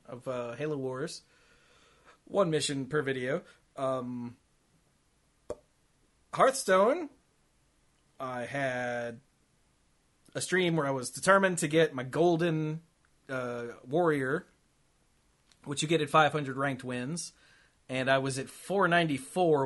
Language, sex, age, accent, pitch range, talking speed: English, male, 30-49, American, 120-155 Hz, 110 wpm